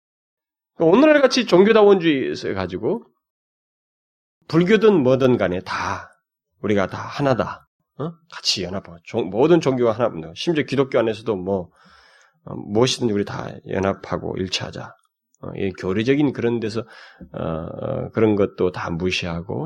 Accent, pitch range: native, 90-140 Hz